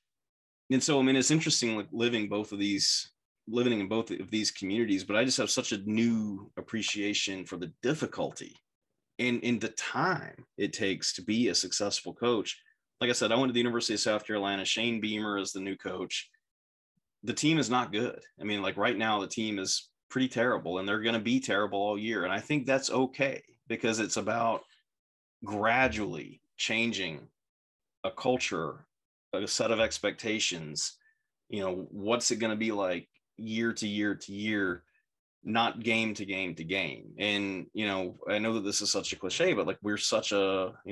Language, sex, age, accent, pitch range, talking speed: English, male, 30-49, American, 100-120 Hz, 190 wpm